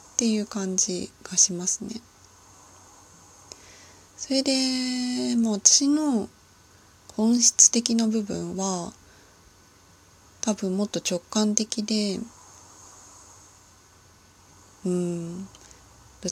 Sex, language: female, Japanese